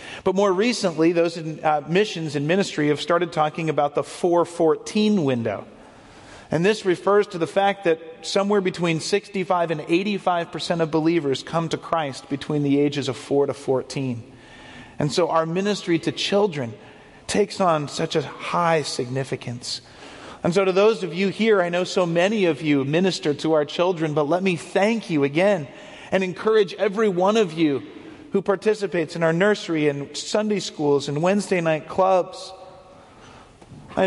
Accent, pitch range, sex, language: American, 150-190 Hz, male, English